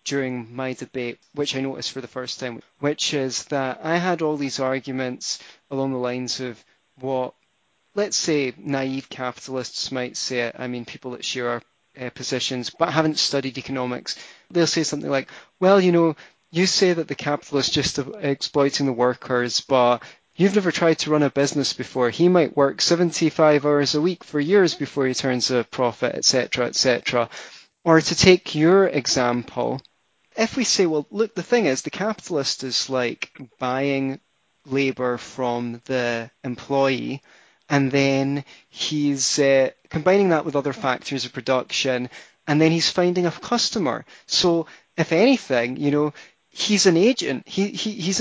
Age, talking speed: 20-39, 165 wpm